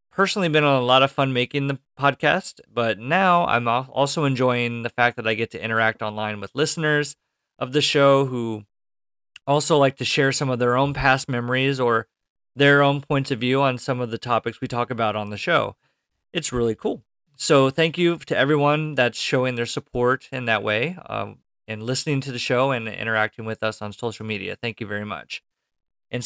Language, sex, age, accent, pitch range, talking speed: English, male, 30-49, American, 115-150 Hz, 205 wpm